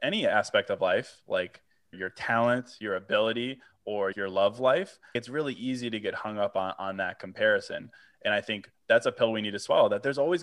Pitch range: 105-135 Hz